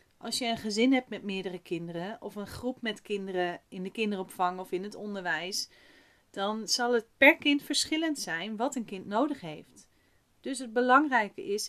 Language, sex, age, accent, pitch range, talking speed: Dutch, female, 30-49, Dutch, 190-245 Hz, 185 wpm